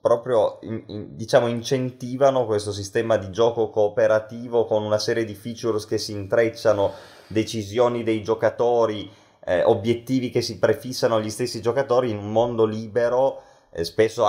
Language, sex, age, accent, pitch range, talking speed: Italian, male, 20-39, native, 100-120 Hz, 145 wpm